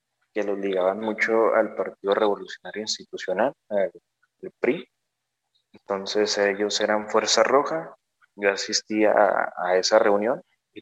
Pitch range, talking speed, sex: 100-120 Hz, 130 wpm, male